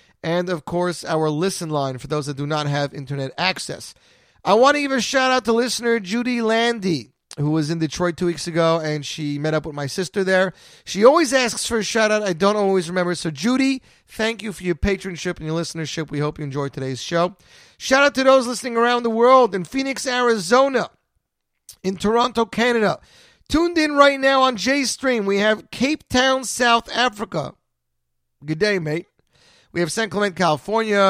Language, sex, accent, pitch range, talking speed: English, male, American, 145-215 Hz, 190 wpm